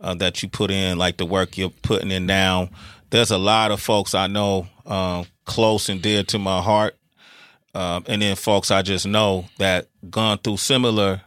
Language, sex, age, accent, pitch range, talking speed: English, male, 30-49, American, 95-110 Hz, 195 wpm